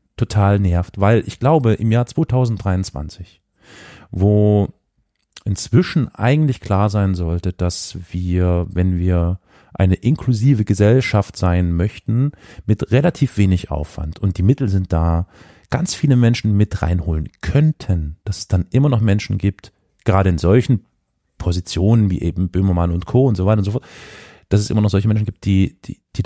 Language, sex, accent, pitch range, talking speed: German, male, German, 90-115 Hz, 160 wpm